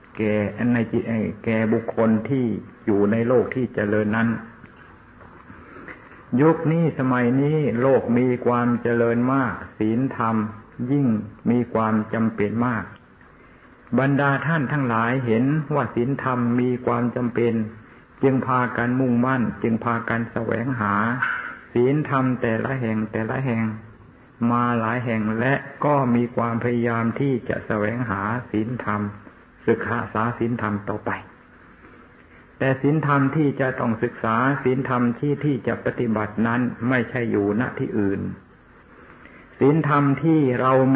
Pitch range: 110-130 Hz